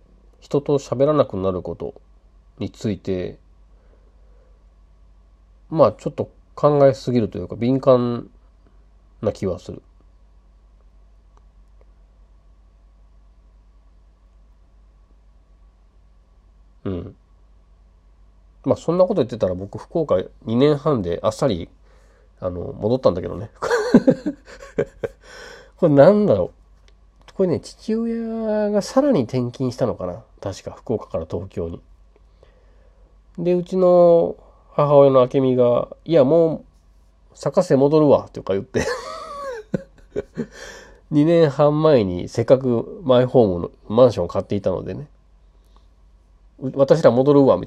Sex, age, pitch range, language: male, 40-59, 85-145 Hz, Japanese